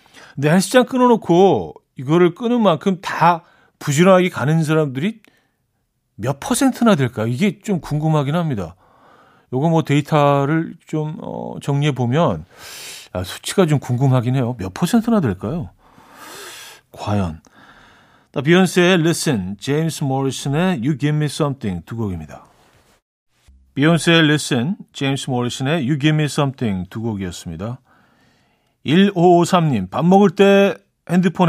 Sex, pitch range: male, 130-175 Hz